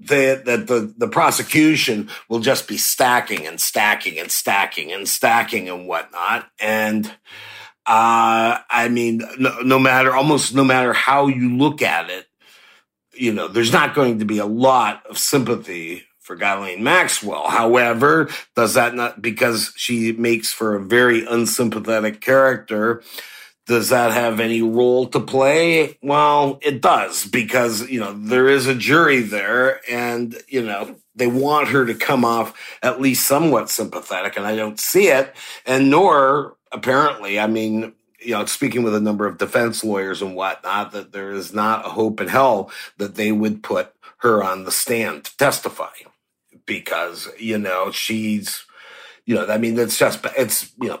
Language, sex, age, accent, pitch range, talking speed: English, male, 50-69, American, 110-130 Hz, 165 wpm